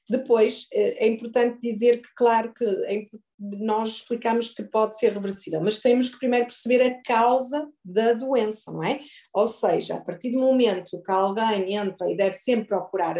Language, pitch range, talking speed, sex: Portuguese, 210-255 Hz, 170 wpm, female